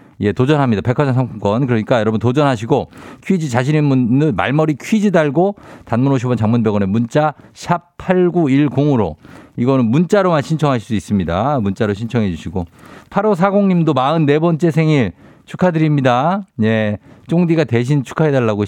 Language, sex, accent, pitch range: Korean, male, native, 110-160 Hz